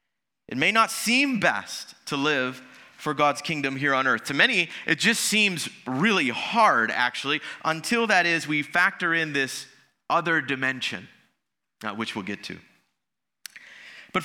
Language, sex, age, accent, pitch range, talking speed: English, male, 30-49, American, 140-180 Hz, 150 wpm